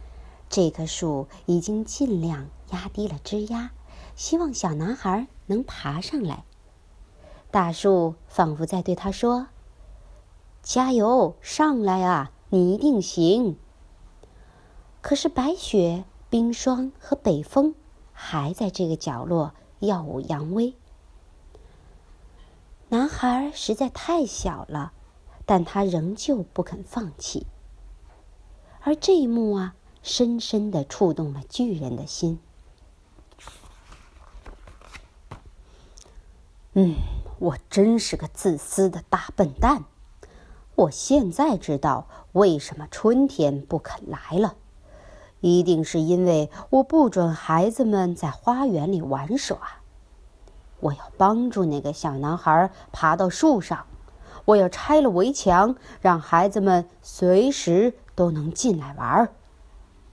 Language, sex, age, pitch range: Chinese, male, 50-69, 130-215 Hz